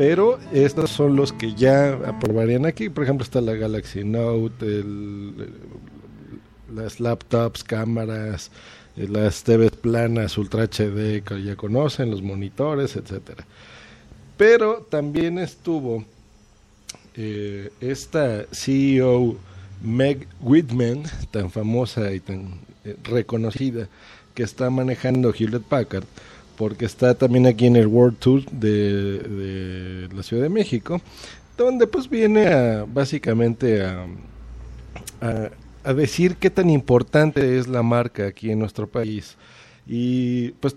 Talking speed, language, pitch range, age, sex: 120 wpm, Spanish, 105-135 Hz, 50-69, male